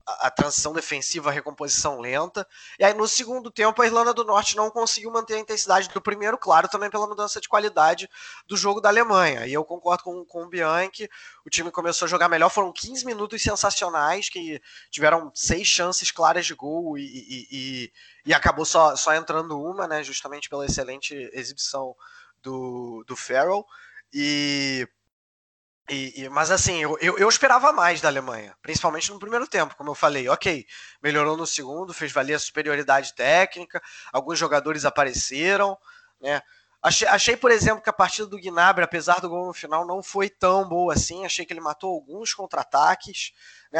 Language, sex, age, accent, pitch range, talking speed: Portuguese, male, 20-39, Brazilian, 145-195 Hz, 175 wpm